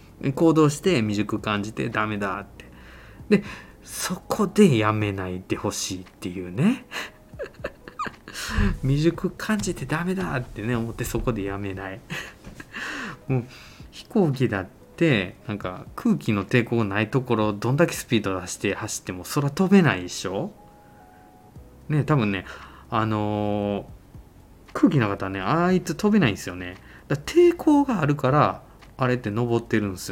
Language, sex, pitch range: Japanese, male, 100-155 Hz